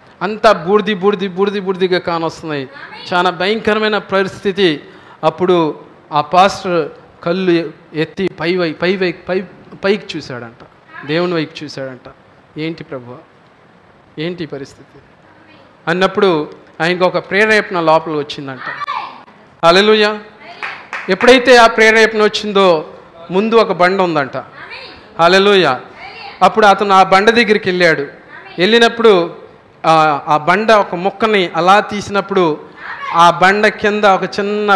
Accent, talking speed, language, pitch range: native, 110 wpm, Telugu, 170-230 Hz